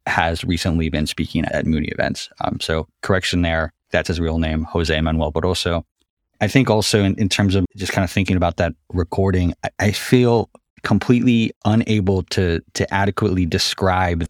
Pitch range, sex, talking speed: 85-100 Hz, male, 170 wpm